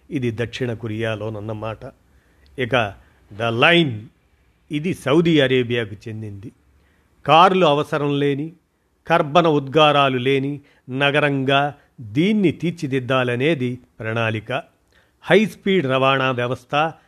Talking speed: 85 wpm